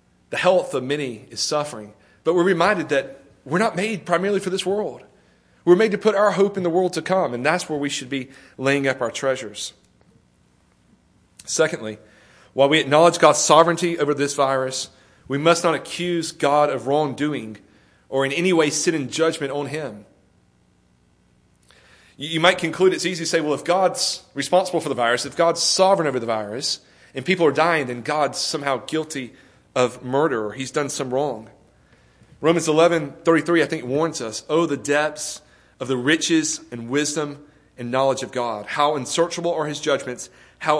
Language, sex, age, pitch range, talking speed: English, male, 30-49, 130-175 Hz, 180 wpm